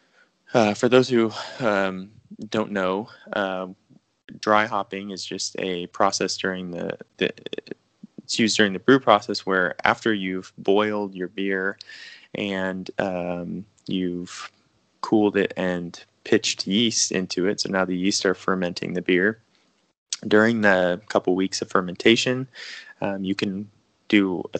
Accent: American